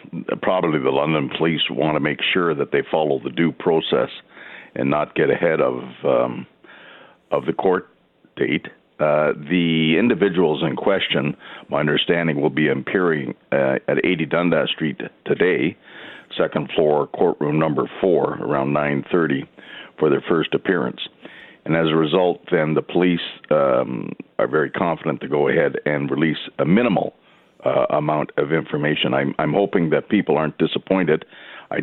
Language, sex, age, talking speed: English, male, 60-79, 155 wpm